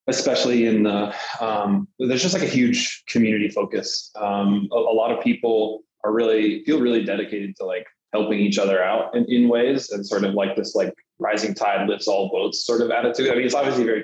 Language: English